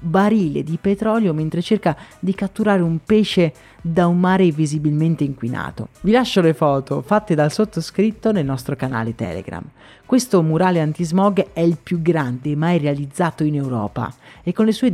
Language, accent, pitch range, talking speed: Italian, native, 150-195 Hz, 160 wpm